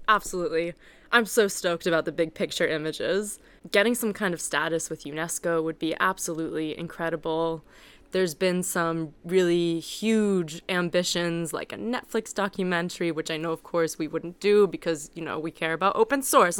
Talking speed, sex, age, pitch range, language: 165 wpm, female, 20-39, 170-225 Hz, Swedish